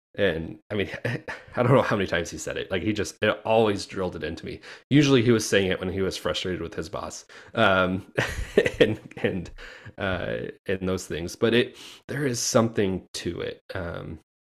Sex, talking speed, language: male, 195 wpm, English